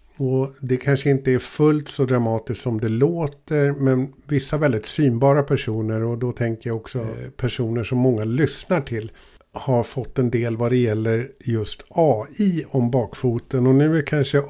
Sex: male